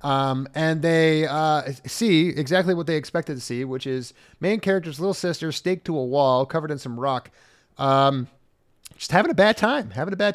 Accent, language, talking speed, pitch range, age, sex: American, English, 195 wpm, 130-180 Hz, 30-49, male